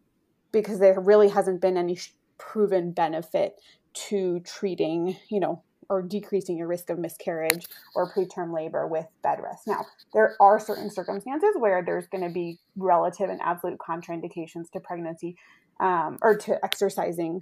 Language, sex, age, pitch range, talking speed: English, female, 20-39, 180-210 Hz, 150 wpm